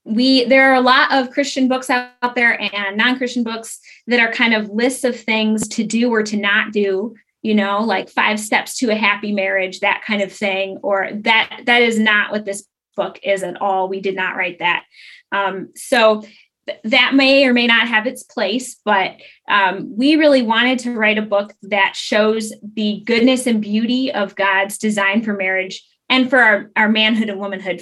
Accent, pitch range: American, 195-235 Hz